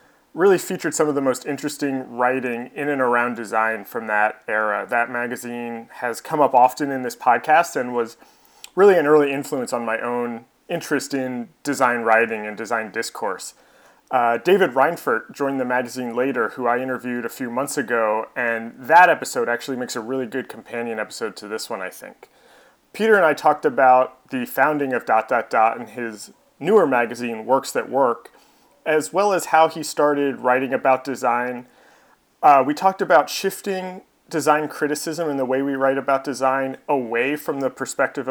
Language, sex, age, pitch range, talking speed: English, male, 30-49, 120-150 Hz, 180 wpm